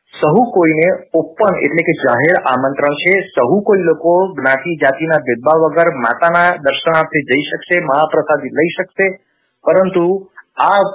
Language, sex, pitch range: Gujarati, male, 140-180 Hz